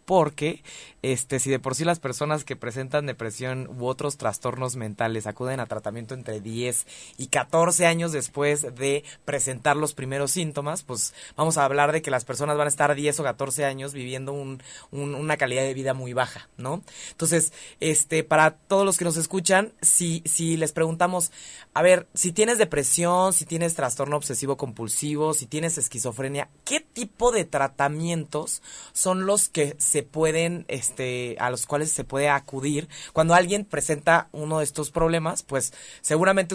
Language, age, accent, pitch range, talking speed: Spanish, 20-39, Mexican, 130-165 Hz, 170 wpm